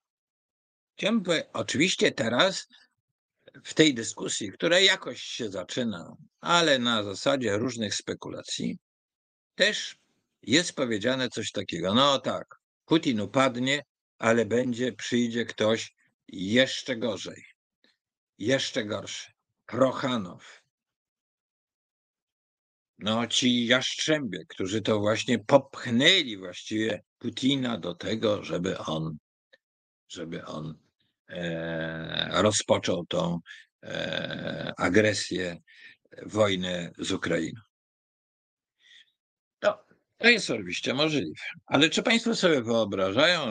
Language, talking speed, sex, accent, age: Polish, 85 wpm, male, native, 50-69